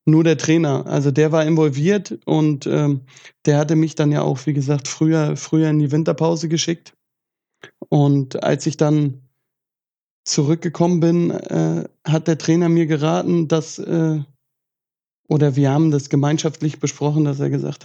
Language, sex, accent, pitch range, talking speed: German, male, German, 145-165 Hz, 155 wpm